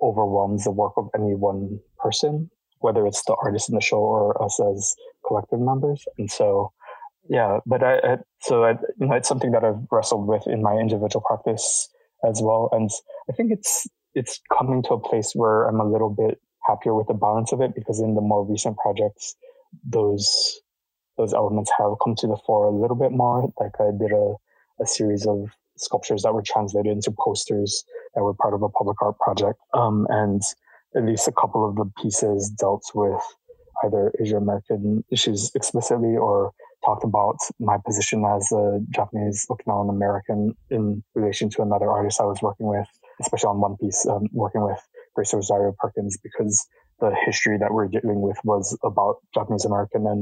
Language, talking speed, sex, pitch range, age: English, 185 wpm, male, 105-150 Hz, 20-39